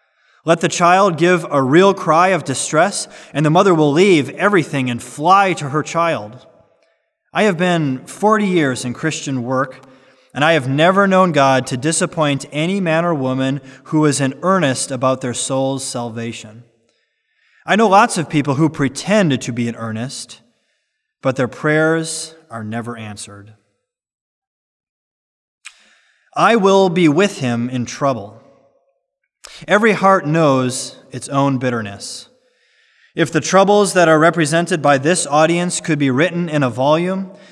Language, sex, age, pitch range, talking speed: English, male, 20-39, 130-175 Hz, 150 wpm